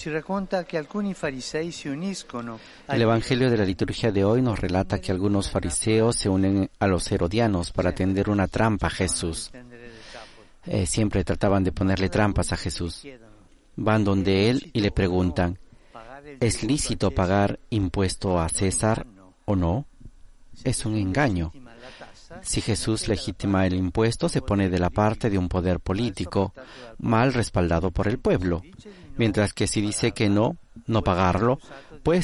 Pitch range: 95-120 Hz